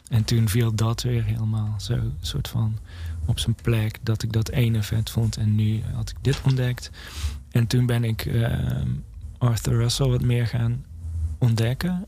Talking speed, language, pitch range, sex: 175 wpm, Dutch, 85-125 Hz, male